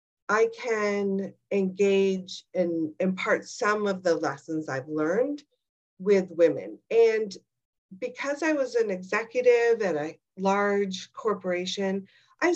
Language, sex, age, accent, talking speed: English, female, 50-69, American, 115 wpm